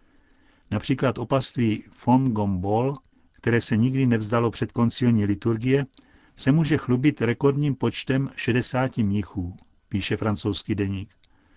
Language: Czech